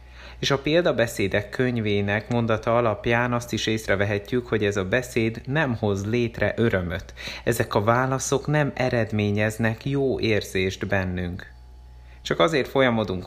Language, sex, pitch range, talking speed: Hungarian, male, 95-120 Hz, 125 wpm